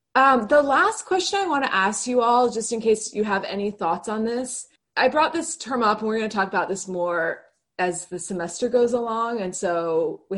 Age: 20-39